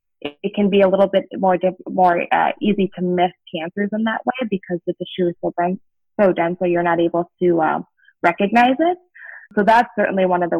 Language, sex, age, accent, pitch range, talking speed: English, female, 20-39, American, 175-195 Hz, 215 wpm